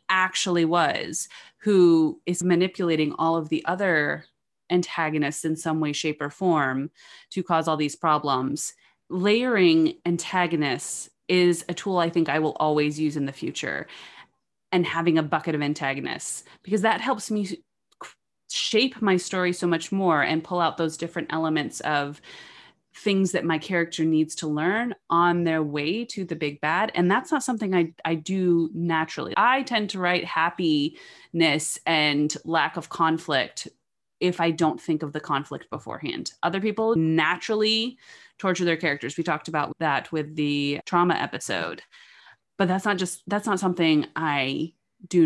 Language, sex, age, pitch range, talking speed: English, female, 30-49, 155-180 Hz, 160 wpm